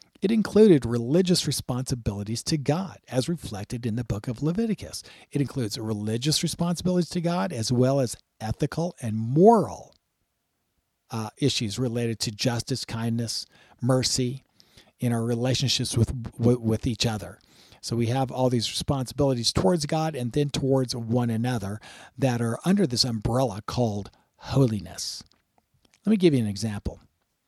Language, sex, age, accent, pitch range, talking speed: English, male, 50-69, American, 115-150 Hz, 140 wpm